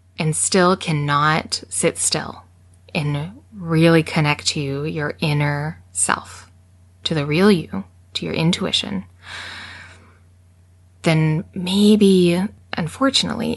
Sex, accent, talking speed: female, American, 95 wpm